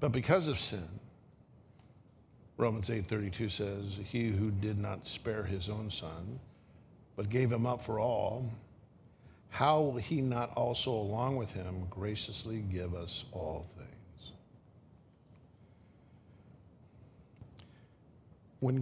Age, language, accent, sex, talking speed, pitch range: 50-69, English, American, male, 120 wpm, 105-145 Hz